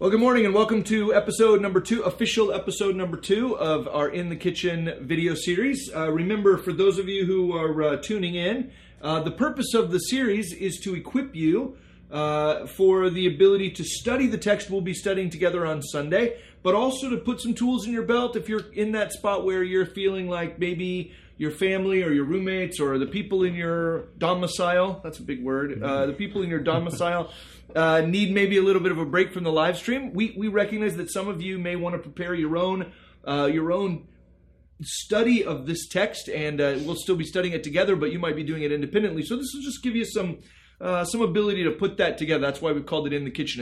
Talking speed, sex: 225 wpm, male